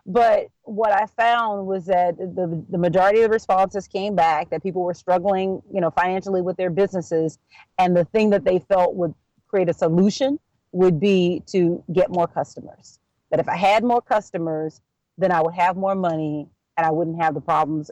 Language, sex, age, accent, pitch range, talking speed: English, female, 40-59, American, 170-200 Hz, 195 wpm